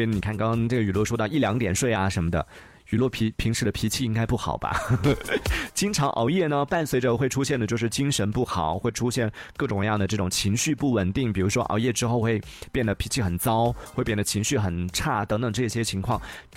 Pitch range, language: 100-140 Hz, Chinese